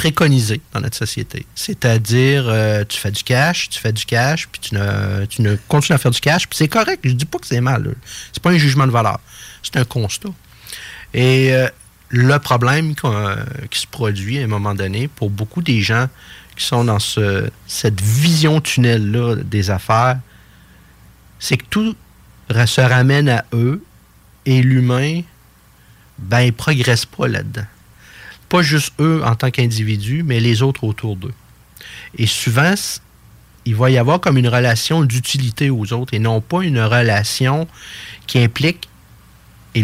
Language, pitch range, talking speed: French, 110-145 Hz, 170 wpm